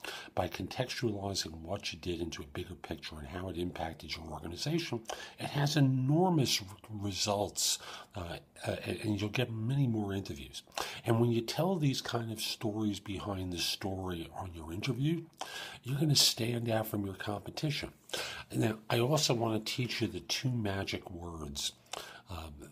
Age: 50-69